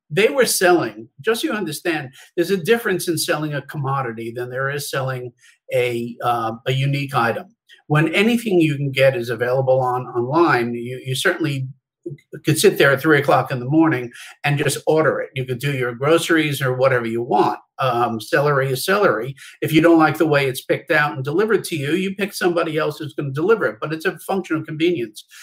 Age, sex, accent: 50-69, male, American